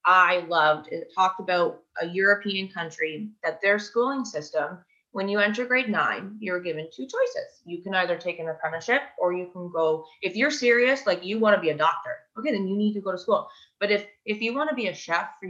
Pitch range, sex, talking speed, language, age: 175-230 Hz, female, 230 wpm, English, 20-39